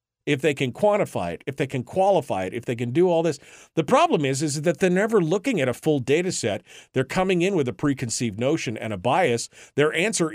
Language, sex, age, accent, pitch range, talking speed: English, male, 50-69, American, 125-170 Hz, 240 wpm